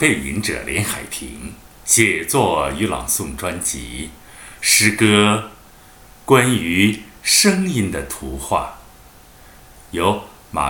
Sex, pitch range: male, 75-115 Hz